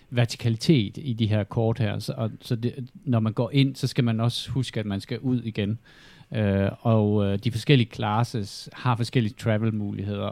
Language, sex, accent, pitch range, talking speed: Danish, male, native, 105-125 Hz, 185 wpm